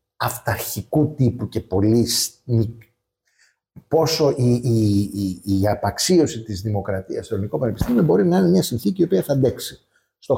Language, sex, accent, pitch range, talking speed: Greek, male, native, 100-140 Hz, 150 wpm